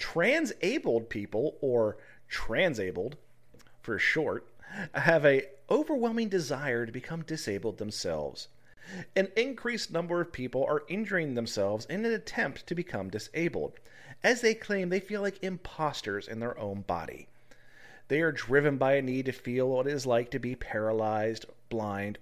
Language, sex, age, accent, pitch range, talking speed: English, male, 40-59, American, 115-165 Hz, 150 wpm